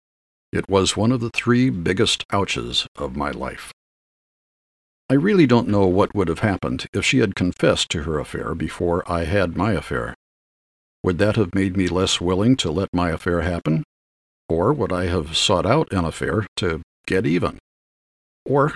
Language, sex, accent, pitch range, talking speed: English, male, American, 75-105 Hz, 175 wpm